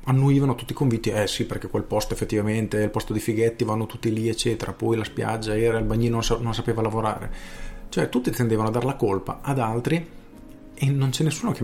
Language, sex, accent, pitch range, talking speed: Italian, male, native, 105-125 Hz, 220 wpm